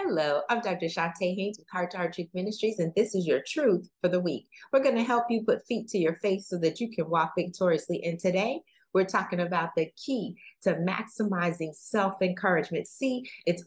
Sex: female